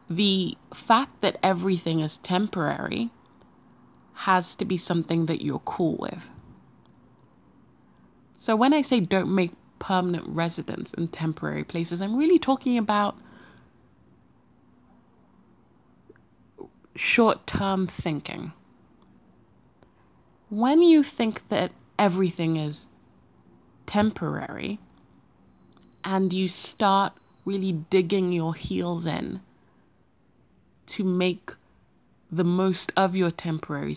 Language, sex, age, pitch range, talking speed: English, female, 20-39, 160-195 Hz, 95 wpm